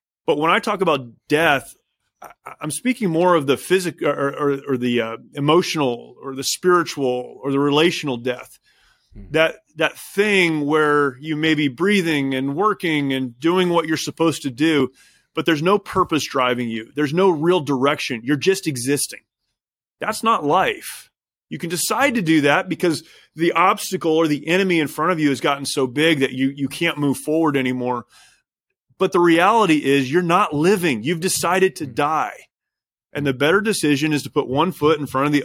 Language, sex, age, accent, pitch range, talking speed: English, male, 30-49, American, 135-165 Hz, 185 wpm